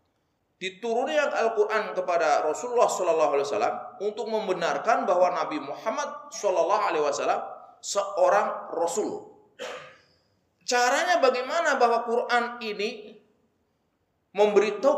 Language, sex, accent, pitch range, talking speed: Indonesian, male, native, 180-260 Hz, 95 wpm